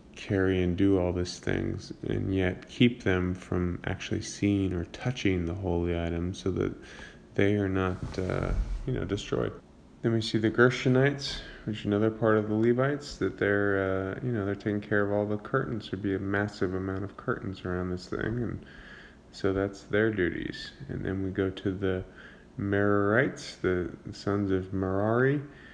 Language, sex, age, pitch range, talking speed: English, male, 20-39, 95-110 Hz, 180 wpm